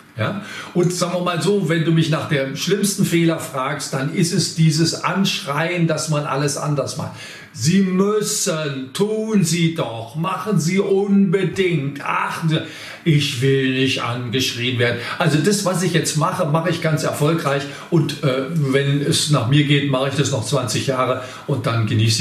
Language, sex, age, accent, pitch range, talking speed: German, male, 50-69, German, 140-175 Hz, 175 wpm